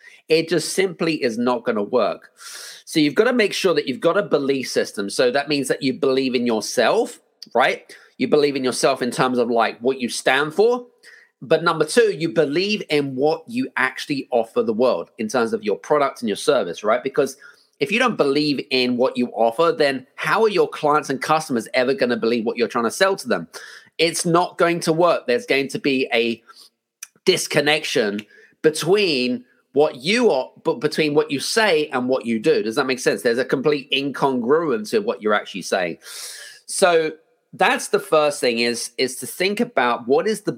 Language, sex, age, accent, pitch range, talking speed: English, male, 30-49, British, 130-180 Hz, 205 wpm